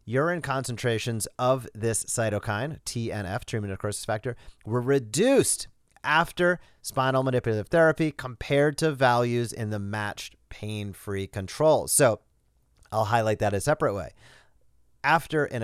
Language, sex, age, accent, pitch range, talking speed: English, male, 30-49, American, 105-135 Hz, 125 wpm